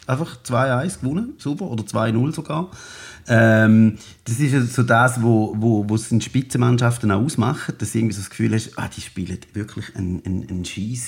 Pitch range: 90-125 Hz